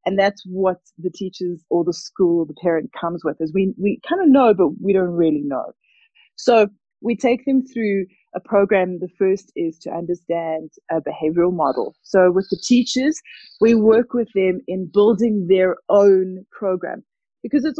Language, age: English, 20-39